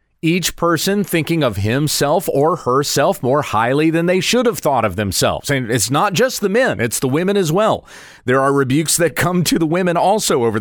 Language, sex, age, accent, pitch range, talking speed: English, male, 30-49, American, 125-180 Hz, 210 wpm